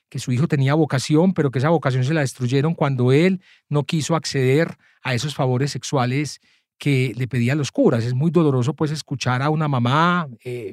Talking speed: 195 wpm